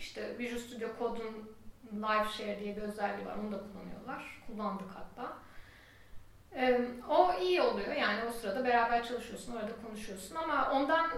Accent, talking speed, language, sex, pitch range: native, 150 wpm, Turkish, female, 205-275 Hz